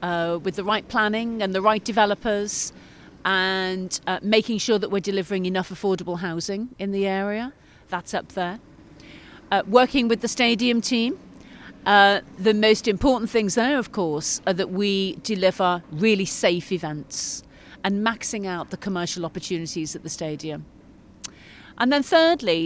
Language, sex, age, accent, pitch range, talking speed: English, female, 40-59, British, 165-215 Hz, 155 wpm